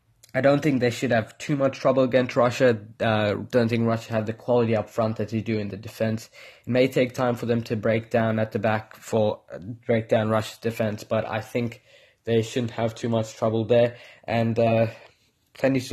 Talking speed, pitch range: 220 wpm, 110-125 Hz